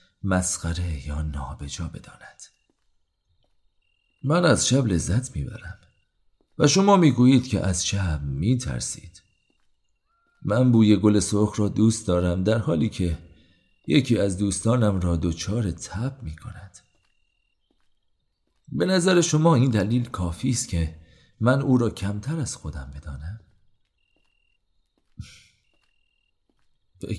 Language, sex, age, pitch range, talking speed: Persian, male, 40-59, 85-115 Hz, 110 wpm